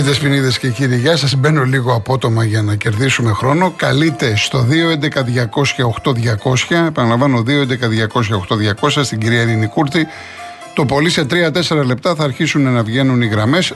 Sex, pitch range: male, 115-150 Hz